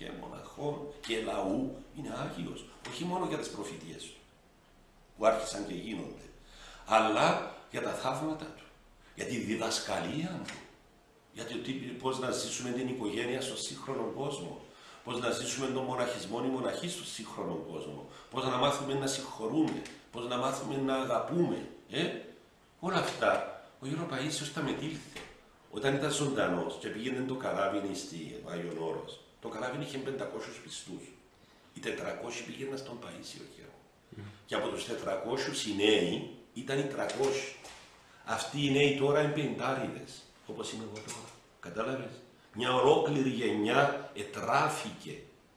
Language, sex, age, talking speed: Greek, male, 60-79, 135 wpm